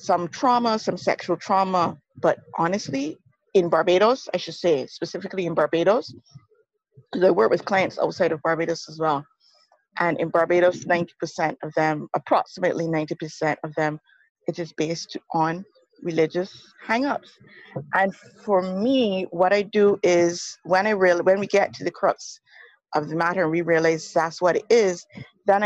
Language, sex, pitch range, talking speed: English, female, 165-200 Hz, 165 wpm